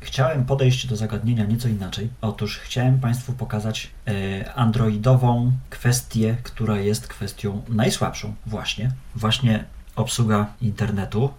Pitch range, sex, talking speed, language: 100-120 Hz, male, 105 wpm, Polish